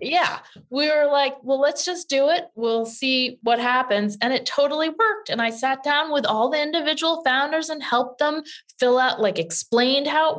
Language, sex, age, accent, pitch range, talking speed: English, female, 20-39, American, 185-280 Hz, 200 wpm